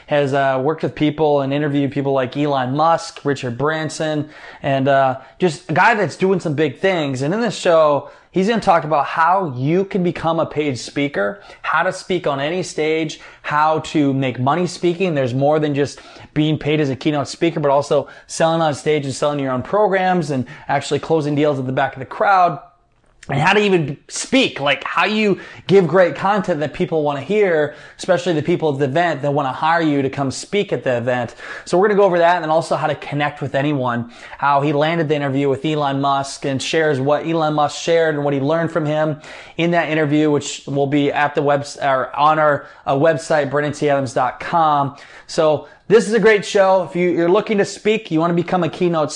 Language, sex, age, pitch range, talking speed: English, male, 20-39, 140-175 Hz, 220 wpm